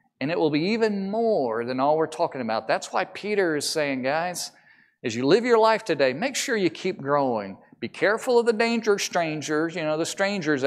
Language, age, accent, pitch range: English, 40-59, American, 145-210 Hz